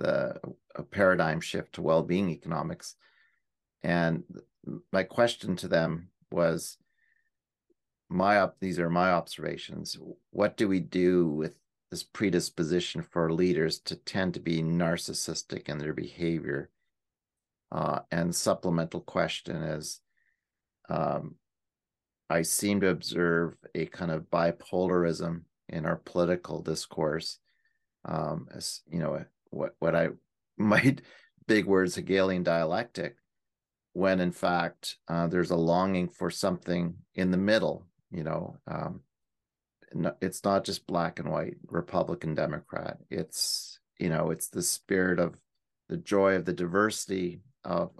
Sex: male